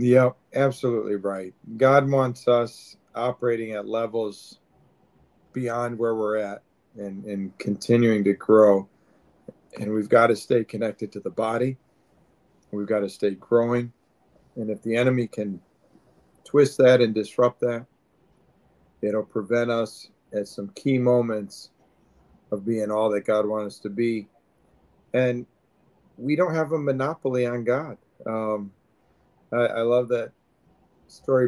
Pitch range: 105-125 Hz